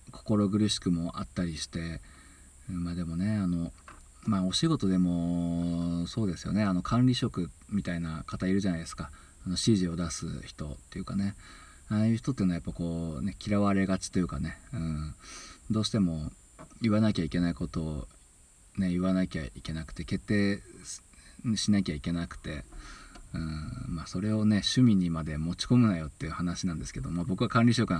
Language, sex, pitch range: Japanese, male, 85-105 Hz